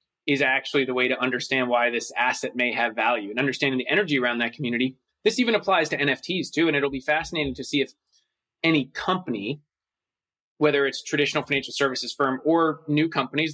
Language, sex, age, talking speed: English, male, 20-39, 190 wpm